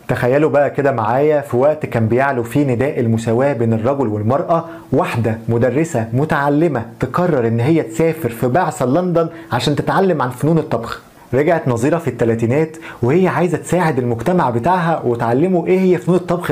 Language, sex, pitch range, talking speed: Arabic, male, 120-160 Hz, 155 wpm